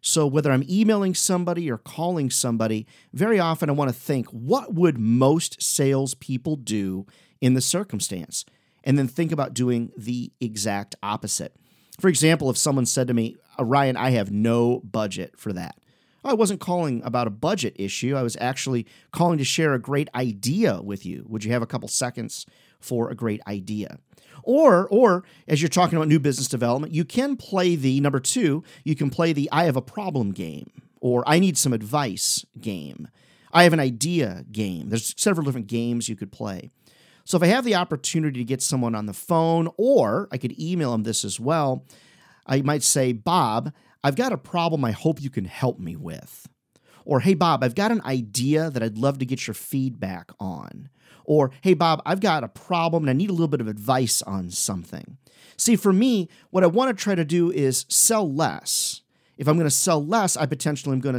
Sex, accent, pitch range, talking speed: male, American, 120-170 Hz, 200 wpm